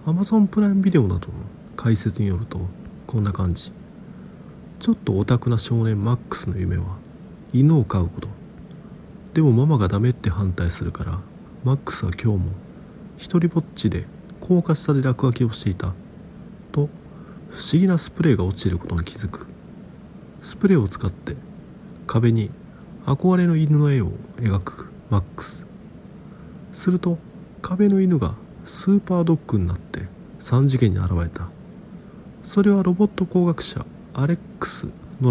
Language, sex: Japanese, male